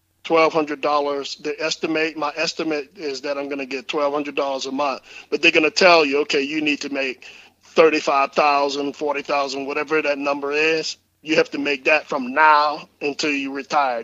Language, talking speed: English, 175 wpm